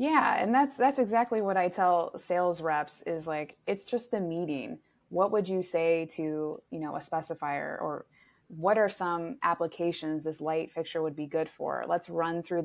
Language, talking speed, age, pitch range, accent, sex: English, 190 wpm, 20-39, 165-195 Hz, American, female